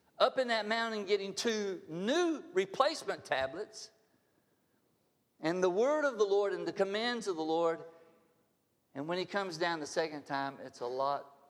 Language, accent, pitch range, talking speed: English, American, 145-215 Hz, 165 wpm